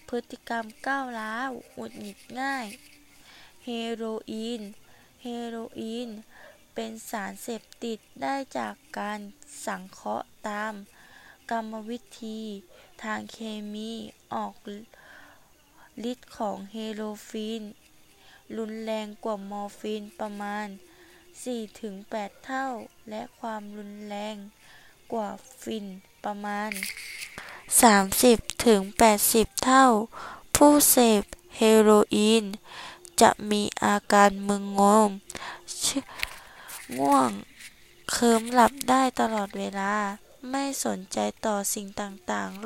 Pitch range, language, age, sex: 205-240 Hz, Thai, 20-39, female